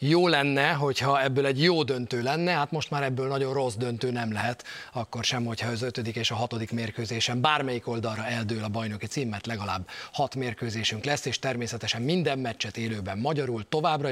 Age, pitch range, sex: 30-49, 120-150 Hz, male